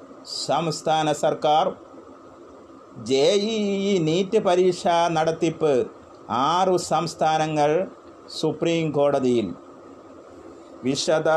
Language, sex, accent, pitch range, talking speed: Malayalam, male, native, 155-190 Hz, 70 wpm